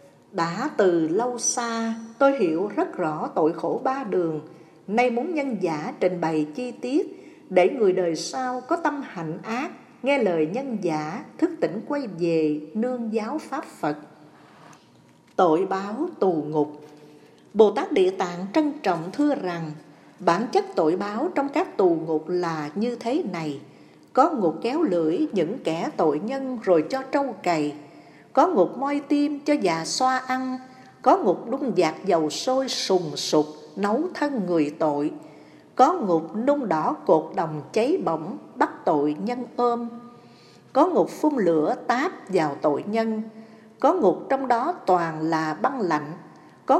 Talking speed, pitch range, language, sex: 160 wpm, 165-265 Hz, Vietnamese, female